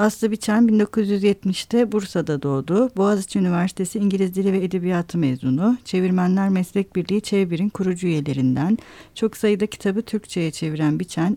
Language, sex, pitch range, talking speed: Turkish, female, 170-205 Hz, 125 wpm